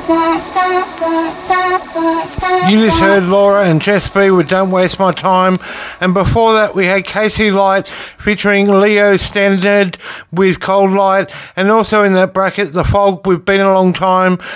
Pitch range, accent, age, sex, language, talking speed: 195-215 Hz, Australian, 60-79, male, English, 155 wpm